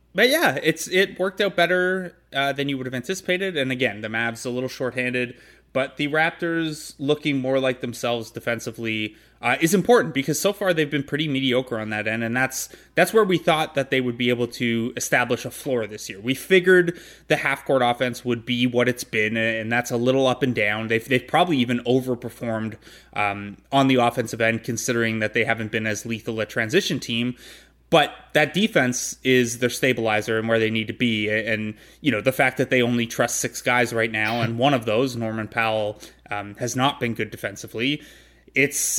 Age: 20-39